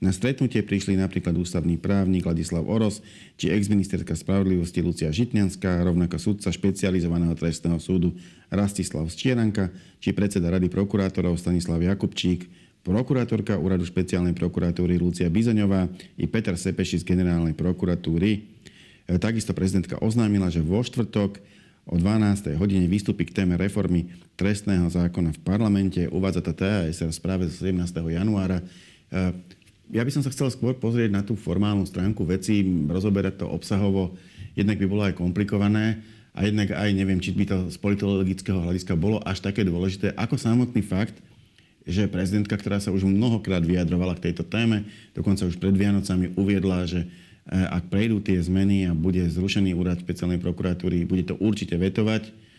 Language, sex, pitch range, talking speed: Slovak, male, 90-100 Hz, 145 wpm